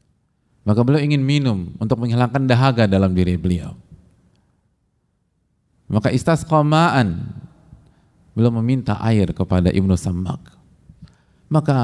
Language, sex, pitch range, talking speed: English, male, 95-140 Hz, 95 wpm